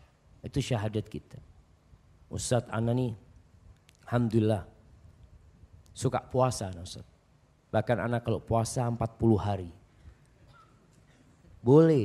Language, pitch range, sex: Indonesian, 105-145 Hz, male